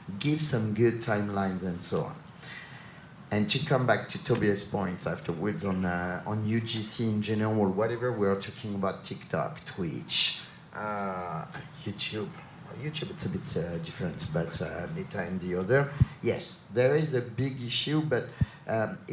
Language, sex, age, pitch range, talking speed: English, male, 50-69, 110-145 Hz, 155 wpm